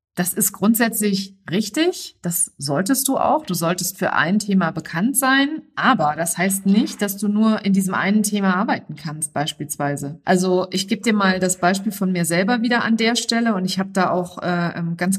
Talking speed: 200 wpm